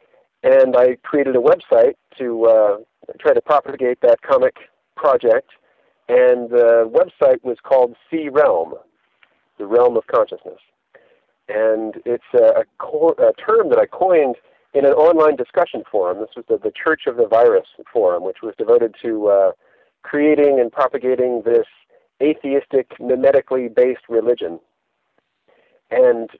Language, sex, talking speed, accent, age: English, male, 135 wpm, American, 50-69